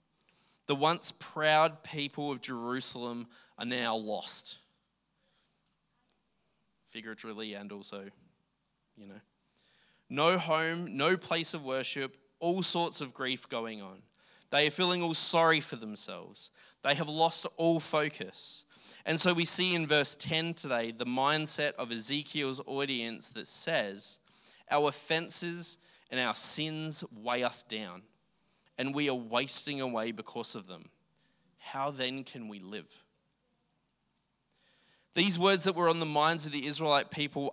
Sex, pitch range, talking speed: male, 125-160 Hz, 135 wpm